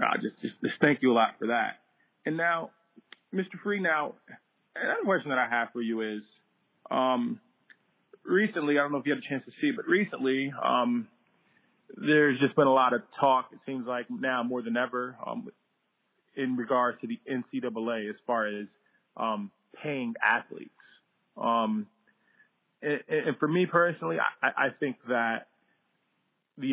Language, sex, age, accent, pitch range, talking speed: English, male, 20-39, American, 115-170 Hz, 170 wpm